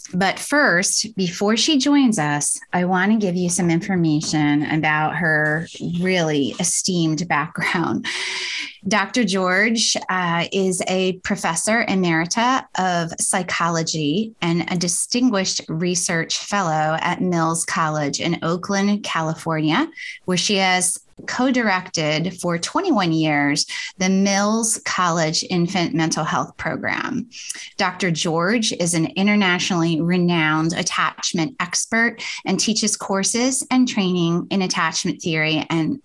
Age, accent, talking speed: 20-39, American, 115 wpm